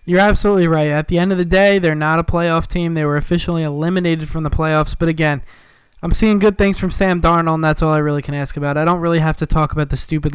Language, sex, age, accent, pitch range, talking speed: English, male, 20-39, American, 150-170 Hz, 275 wpm